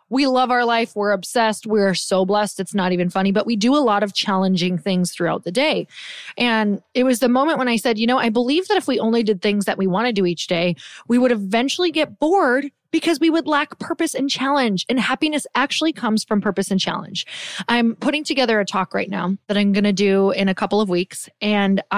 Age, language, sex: 20-39, English, female